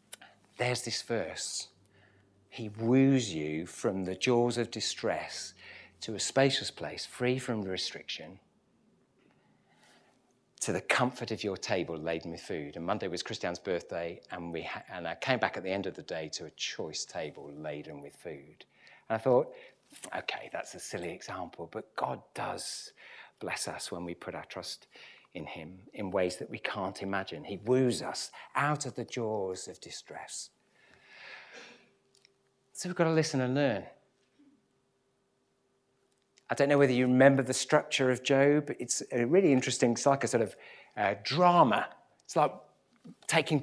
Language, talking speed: English, 160 wpm